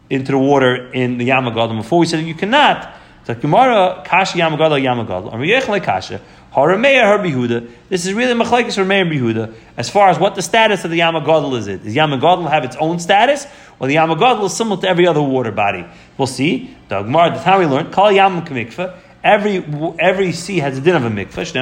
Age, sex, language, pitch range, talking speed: 30-49, male, English, 130-180 Hz, 170 wpm